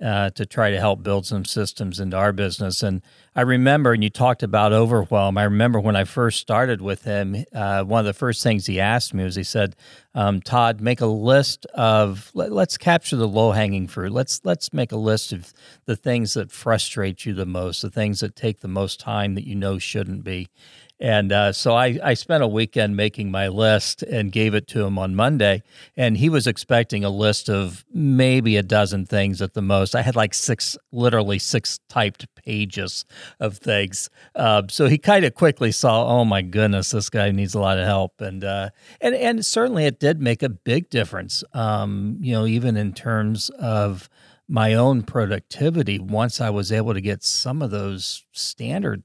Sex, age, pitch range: male, 40-59, 100-125 Hz